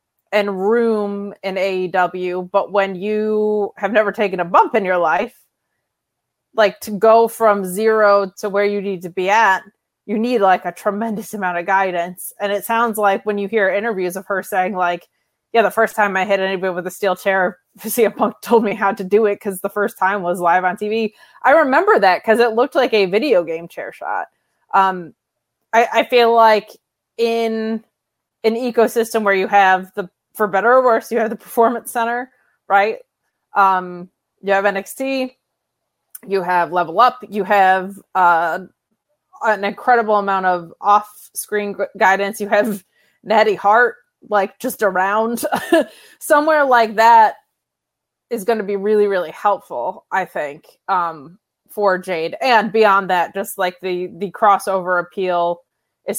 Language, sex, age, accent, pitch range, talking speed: English, female, 20-39, American, 185-225 Hz, 170 wpm